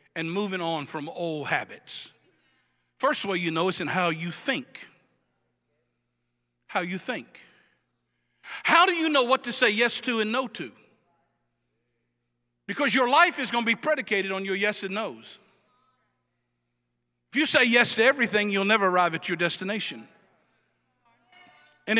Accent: American